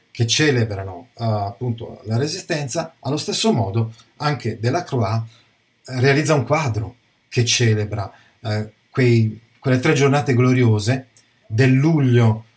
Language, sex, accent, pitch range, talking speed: Italian, male, native, 115-135 Hz, 125 wpm